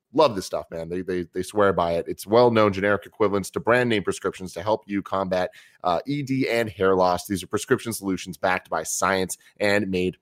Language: English